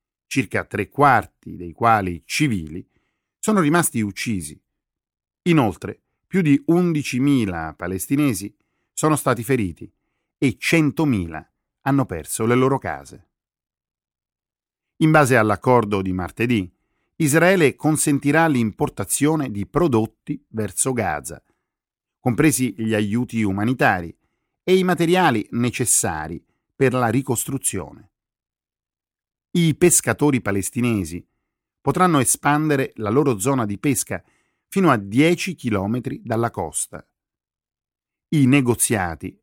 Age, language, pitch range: 50-69, Italian, 105-150 Hz